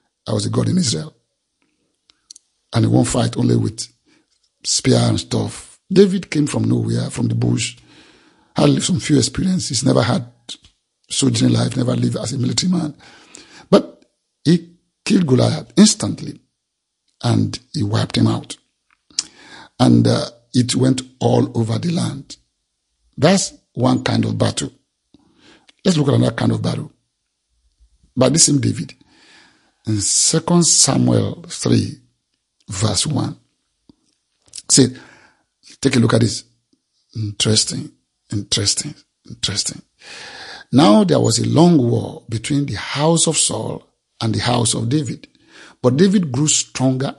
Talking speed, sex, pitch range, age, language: 135 wpm, male, 105-150 Hz, 50-69, English